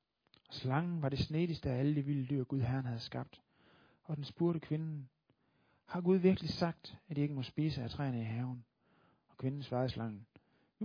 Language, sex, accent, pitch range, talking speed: Danish, male, native, 125-165 Hz, 195 wpm